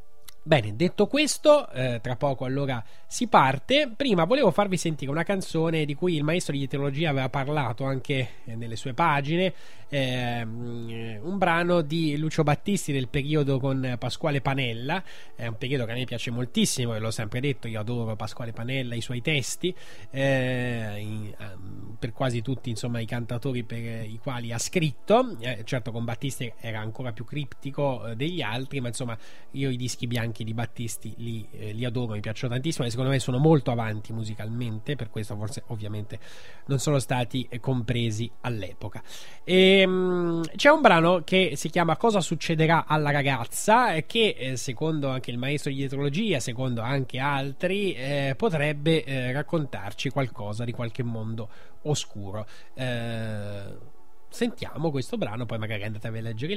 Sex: male